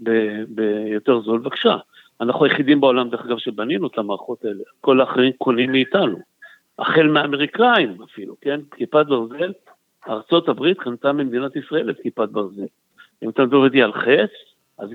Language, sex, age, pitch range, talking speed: Hebrew, male, 60-79, 130-165 Hz, 155 wpm